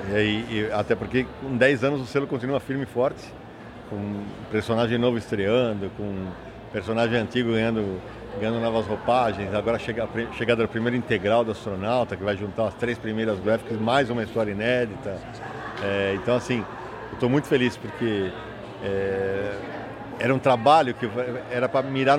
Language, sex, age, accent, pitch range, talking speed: Portuguese, male, 50-69, Brazilian, 110-145 Hz, 150 wpm